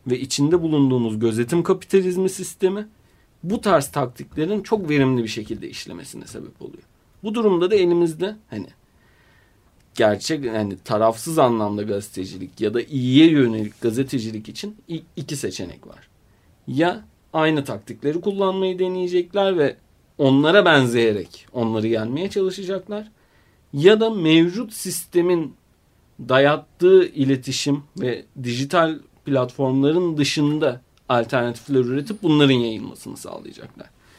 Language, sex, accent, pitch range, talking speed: Turkish, male, native, 120-175 Hz, 105 wpm